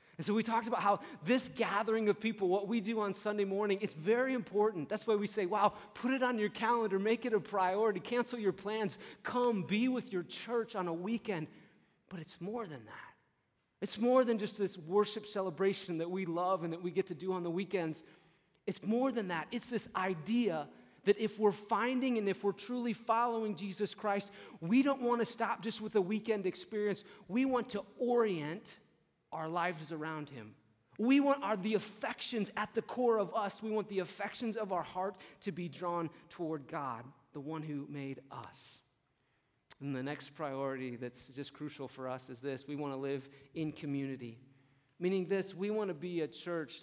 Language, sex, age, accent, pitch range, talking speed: English, male, 40-59, American, 150-215 Hz, 200 wpm